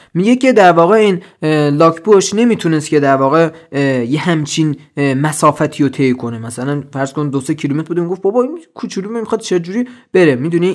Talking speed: 180 wpm